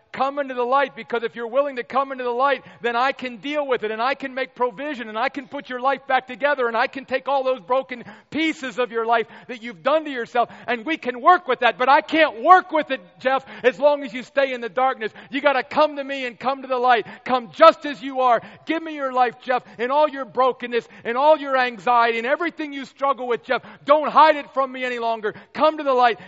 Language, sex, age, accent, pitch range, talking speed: English, male, 40-59, American, 185-275 Hz, 265 wpm